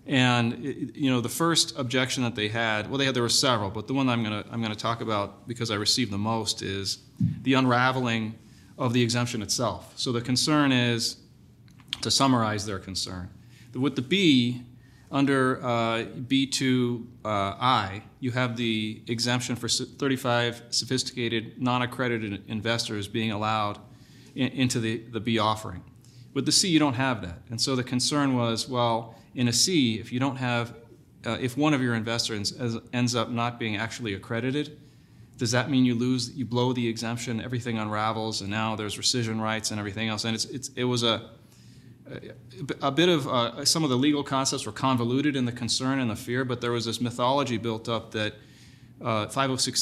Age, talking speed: 30-49, 185 wpm